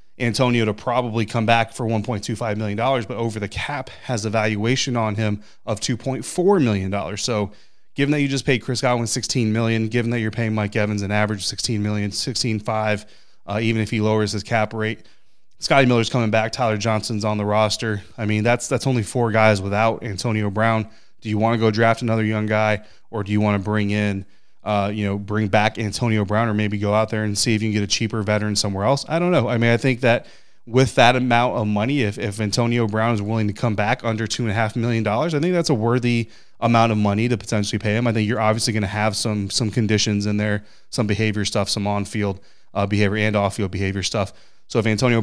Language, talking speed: English, 230 wpm